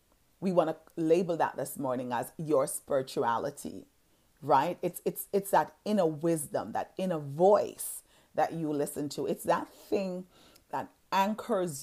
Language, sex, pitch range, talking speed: English, female, 160-205 Hz, 145 wpm